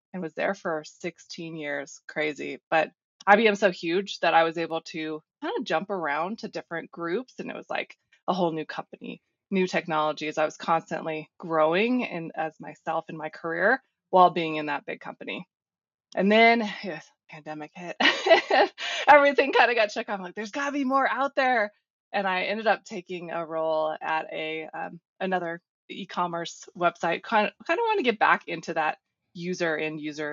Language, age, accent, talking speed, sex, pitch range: English, 20-39, American, 185 wpm, female, 160-200 Hz